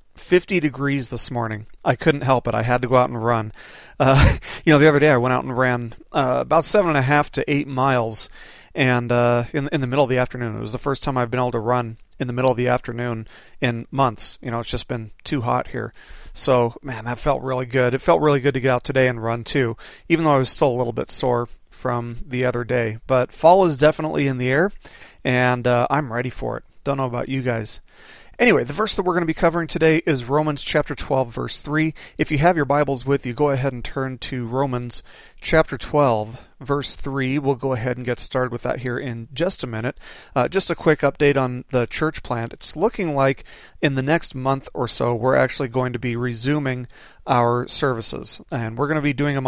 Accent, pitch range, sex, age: American, 120-145 Hz, male, 40-59